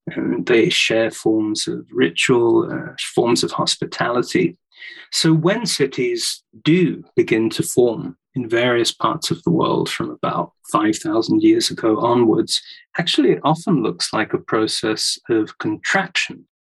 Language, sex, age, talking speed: English, male, 30-49, 135 wpm